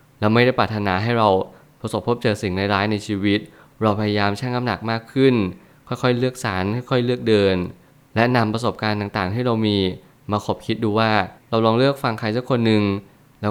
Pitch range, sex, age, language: 105-125 Hz, male, 20-39, Thai